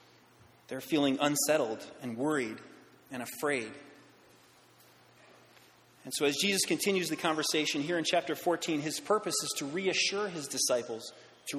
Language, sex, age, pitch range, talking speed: English, male, 30-49, 140-180 Hz, 135 wpm